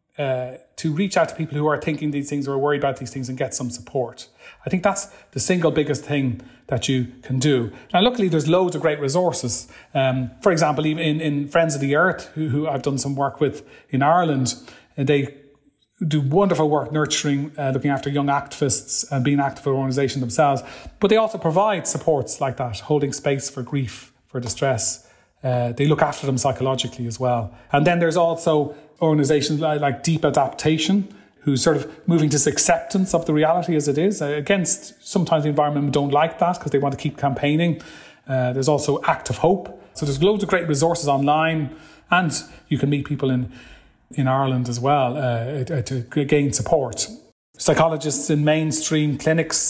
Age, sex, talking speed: 30-49, male, 195 wpm